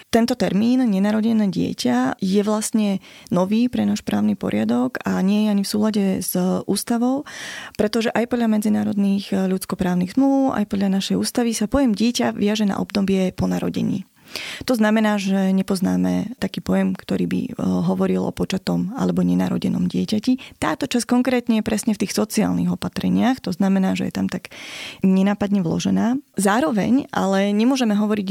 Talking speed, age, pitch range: 155 wpm, 20-39, 190-220 Hz